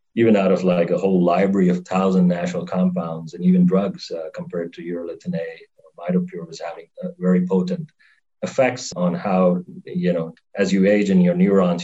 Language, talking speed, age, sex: English, 175 wpm, 40-59, male